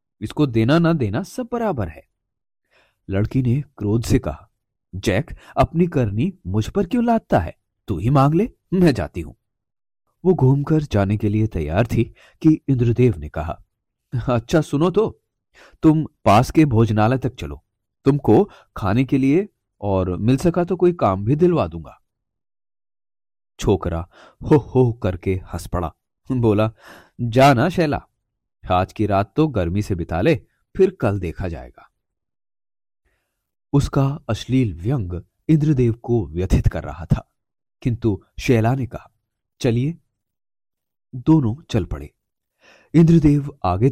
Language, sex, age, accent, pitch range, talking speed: Hindi, male, 30-49, native, 100-140 Hz, 135 wpm